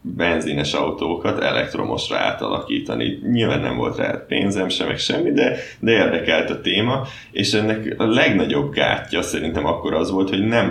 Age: 20-39